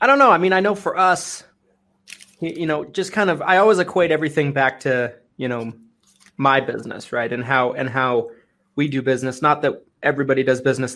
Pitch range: 125-155 Hz